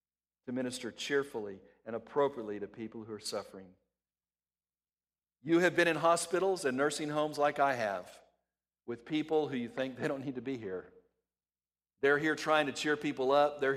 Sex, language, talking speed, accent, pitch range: male, English, 175 wpm, American, 115-150 Hz